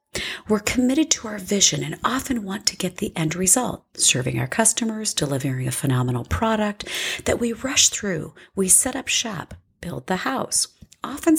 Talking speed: 170 wpm